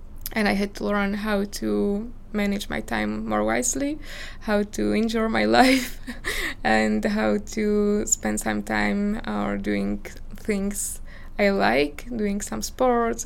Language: English